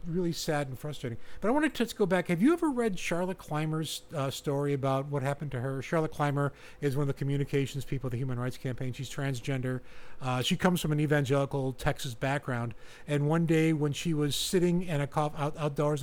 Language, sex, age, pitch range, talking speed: English, male, 50-69, 140-175 Hz, 210 wpm